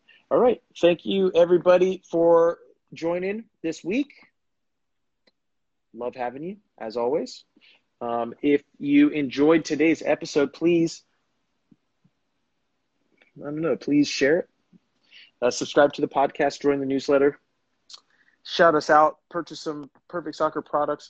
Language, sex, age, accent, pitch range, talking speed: English, male, 30-49, American, 125-160 Hz, 120 wpm